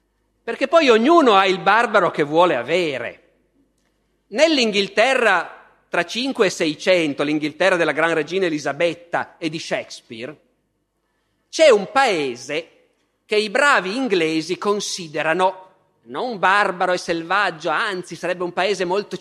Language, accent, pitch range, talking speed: Italian, native, 165-230 Hz, 120 wpm